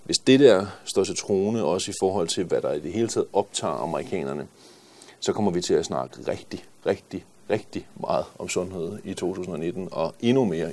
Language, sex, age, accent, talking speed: Danish, male, 40-59, native, 195 wpm